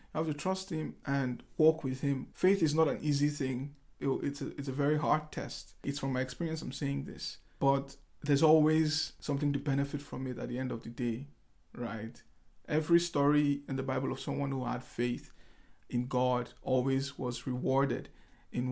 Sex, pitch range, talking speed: male, 135-150 Hz, 190 wpm